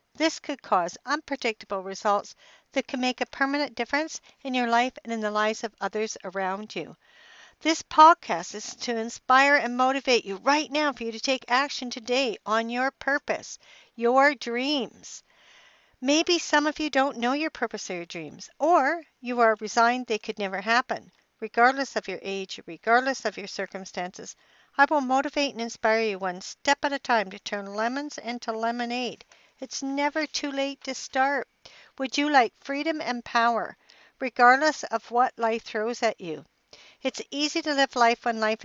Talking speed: 175 wpm